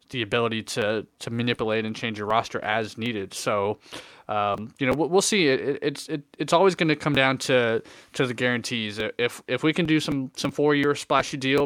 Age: 20-39